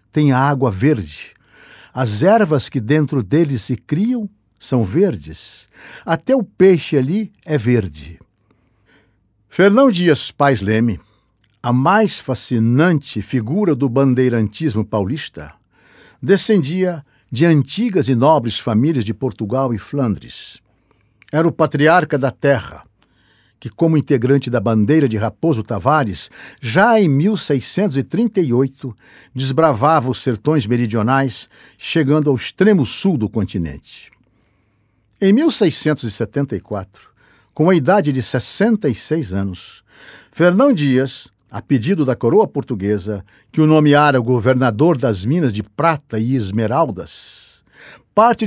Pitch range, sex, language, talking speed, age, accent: 115-160 Hz, male, Portuguese, 115 wpm, 60-79, Brazilian